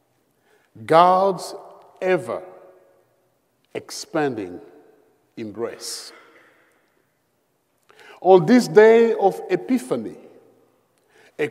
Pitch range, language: 150-205 Hz, English